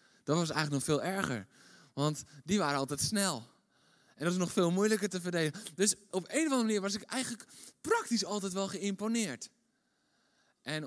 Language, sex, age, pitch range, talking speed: Dutch, male, 20-39, 130-180 Hz, 180 wpm